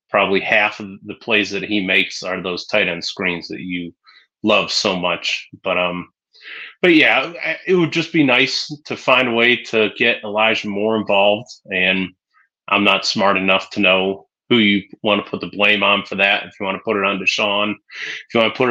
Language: English